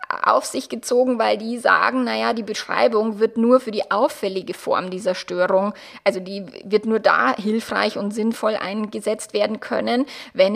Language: German